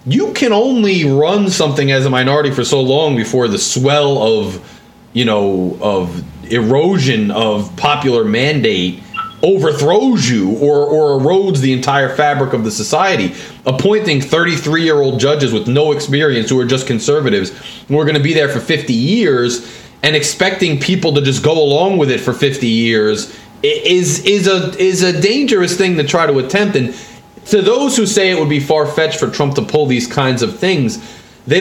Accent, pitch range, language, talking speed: American, 130-185 Hz, English, 175 wpm